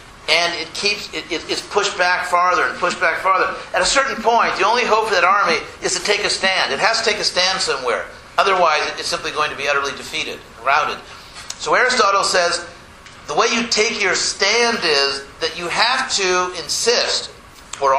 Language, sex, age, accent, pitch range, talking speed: English, male, 50-69, American, 170-220 Hz, 205 wpm